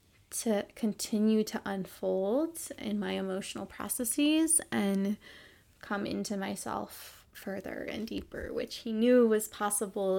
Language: English